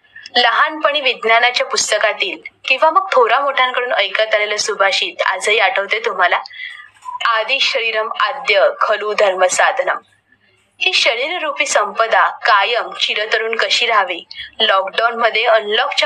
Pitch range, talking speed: 205-260 Hz, 85 wpm